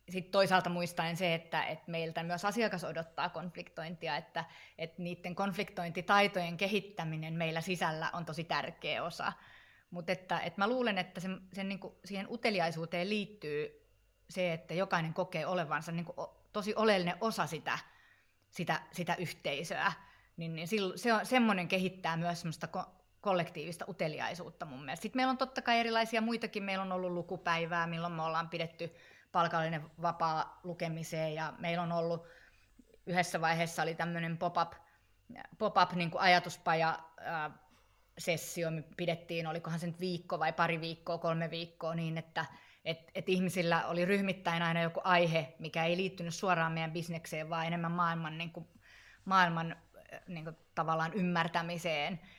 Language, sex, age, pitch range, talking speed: Finnish, female, 30-49, 165-185 Hz, 130 wpm